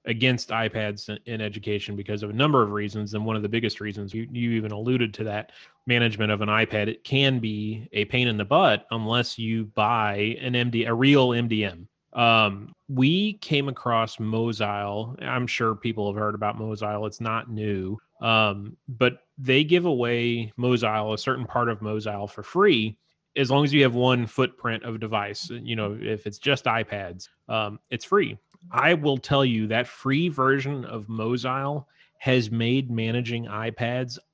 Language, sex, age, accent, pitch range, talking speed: English, male, 30-49, American, 110-125 Hz, 175 wpm